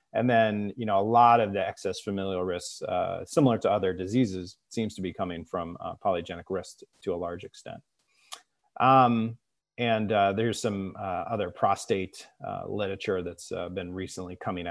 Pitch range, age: 95-120 Hz, 30-49